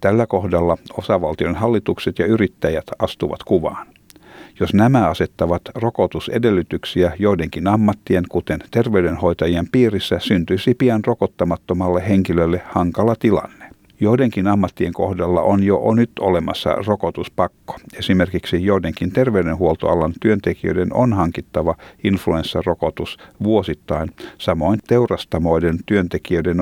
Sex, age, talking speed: male, 50-69, 95 wpm